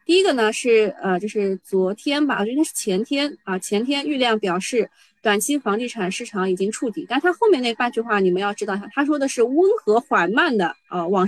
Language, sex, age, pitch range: Chinese, female, 20-39, 205-285 Hz